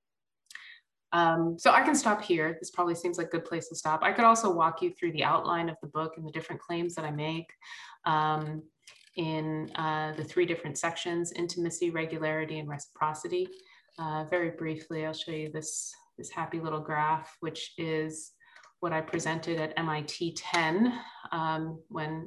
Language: English